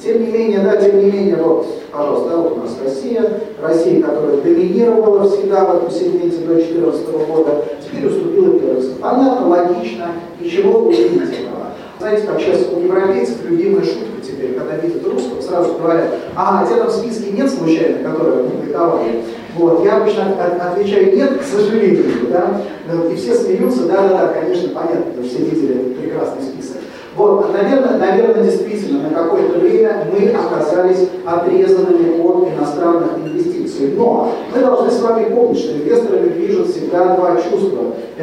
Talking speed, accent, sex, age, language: 160 wpm, native, male, 40-59, Russian